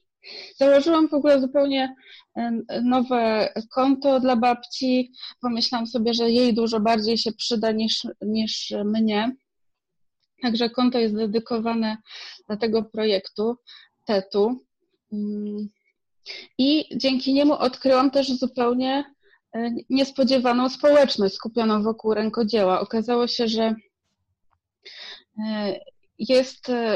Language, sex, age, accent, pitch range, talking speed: Polish, female, 30-49, native, 220-255 Hz, 95 wpm